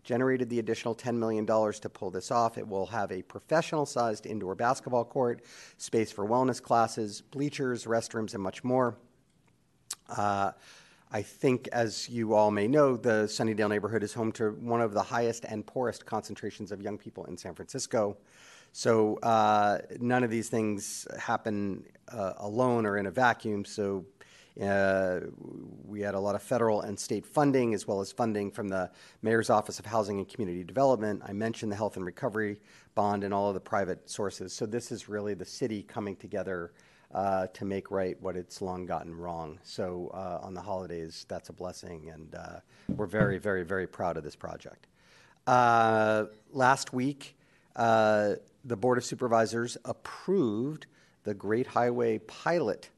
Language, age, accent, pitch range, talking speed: English, 40-59, American, 100-120 Hz, 170 wpm